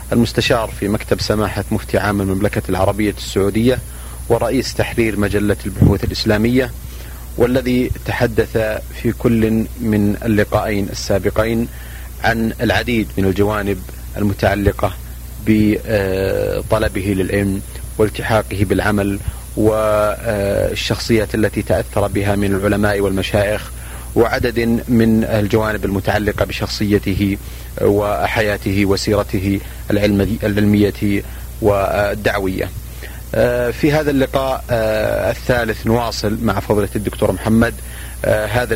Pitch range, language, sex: 100-110 Hz, Arabic, male